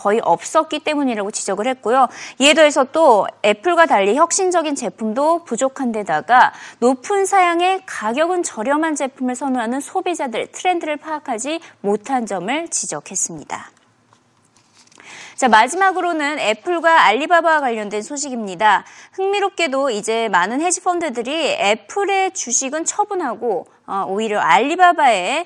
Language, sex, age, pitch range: Korean, female, 20-39, 220-335 Hz